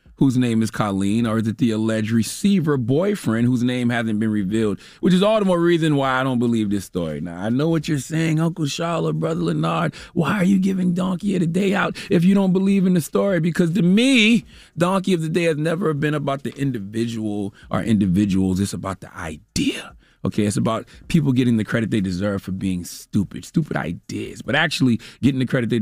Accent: American